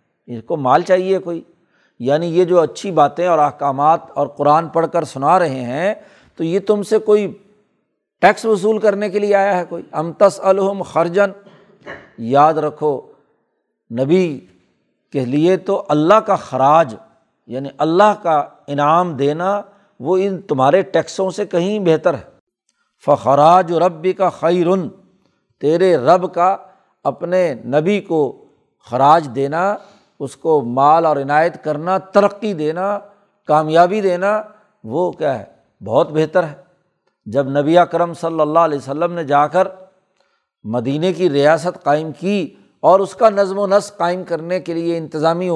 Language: Urdu